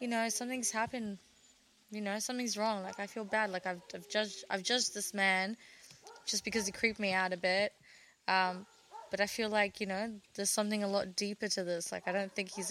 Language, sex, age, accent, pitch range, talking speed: English, female, 20-39, Australian, 190-210 Hz, 220 wpm